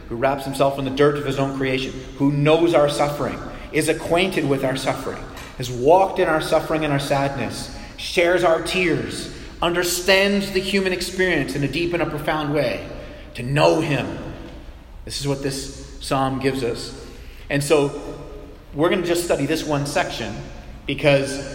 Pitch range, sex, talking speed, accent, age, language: 120-145 Hz, male, 175 wpm, American, 30-49, English